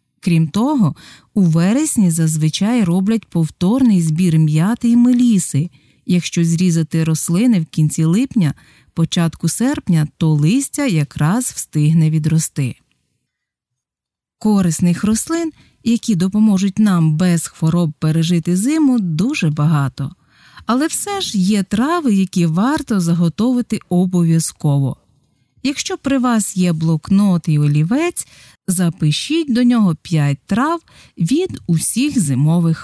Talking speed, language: 105 wpm, Ukrainian